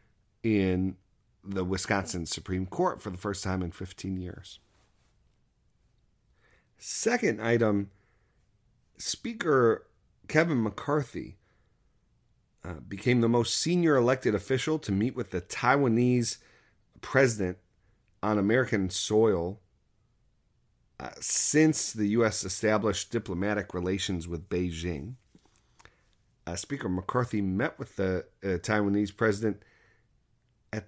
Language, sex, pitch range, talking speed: English, male, 95-115 Hz, 100 wpm